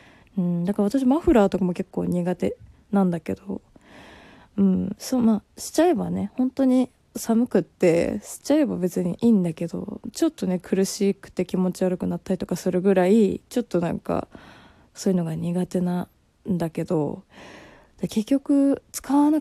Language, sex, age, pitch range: Japanese, female, 20-39, 180-245 Hz